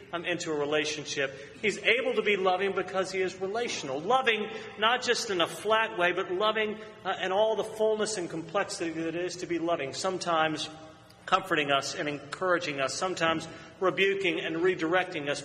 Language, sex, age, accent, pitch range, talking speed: English, male, 40-59, American, 165-200 Hz, 180 wpm